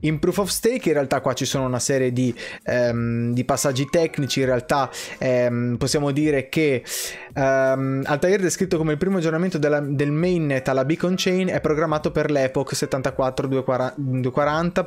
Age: 20-39